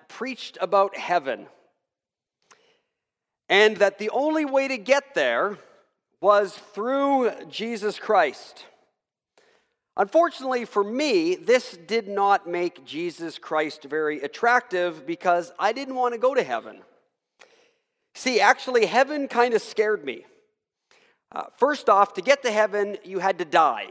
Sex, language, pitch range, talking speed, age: male, English, 190-275 Hz, 130 wpm, 40-59